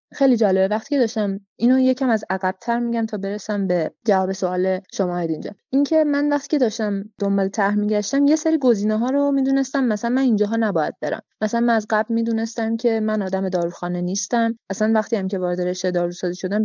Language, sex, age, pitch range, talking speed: Persian, female, 20-39, 190-245 Hz, 195 wpm